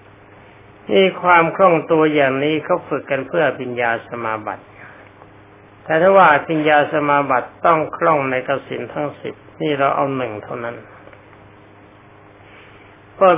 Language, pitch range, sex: Thai, 100-150 Hz, male